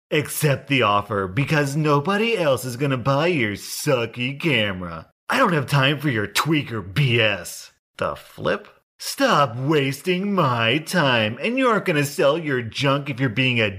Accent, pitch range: American, 110-155 Hz